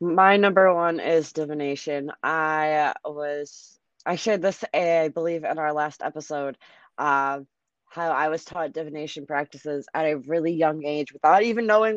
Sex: female